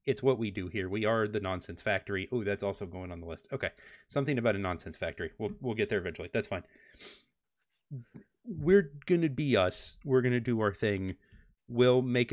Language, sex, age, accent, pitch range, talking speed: English, male, 30-49, American, 100-130 Hz, 200 wpm